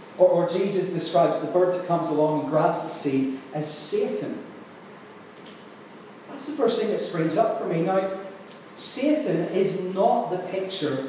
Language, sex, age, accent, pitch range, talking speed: English, male, 40-59, British, 155-195 Hz, 160 wpm